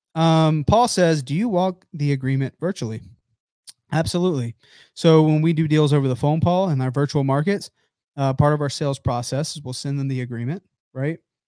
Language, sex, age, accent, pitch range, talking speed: English, male, 30-49, American, 130-160 Hz, 190 wpm